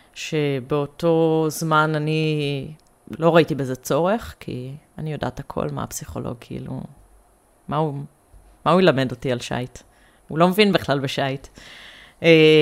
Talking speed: 130 wpm